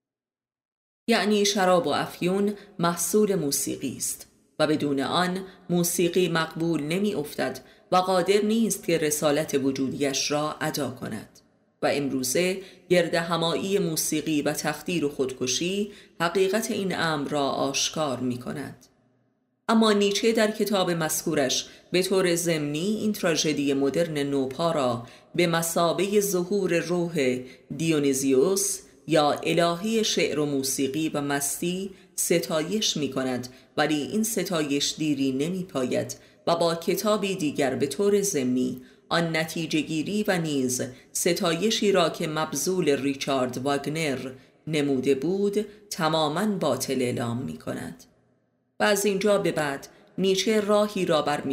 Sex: female